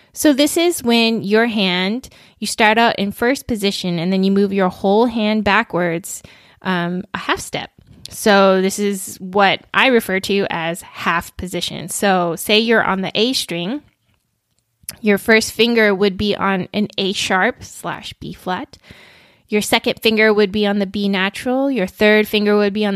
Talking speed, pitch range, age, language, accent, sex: 180 wpm, 190-230 Hz, 10-29, English, American, female